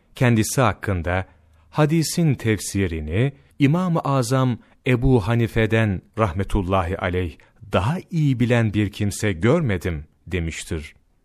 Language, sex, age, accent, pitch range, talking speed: Turkish, male, 40-59, native, 95-135 Hz, 90 wpm